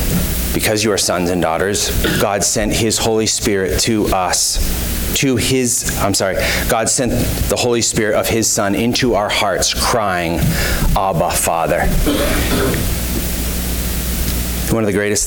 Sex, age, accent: male, 30-49, American